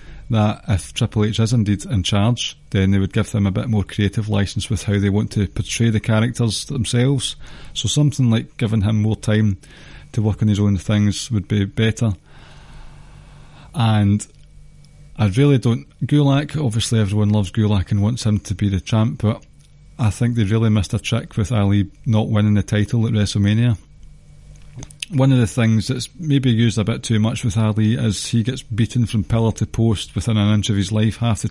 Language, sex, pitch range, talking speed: English, male, 105-120 Hz, 200 wpm